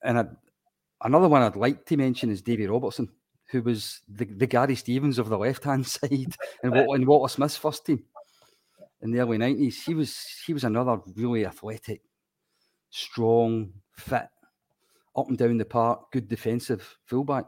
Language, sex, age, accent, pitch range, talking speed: English, male, 40-59, British, 110-135 Hz, 170 wpm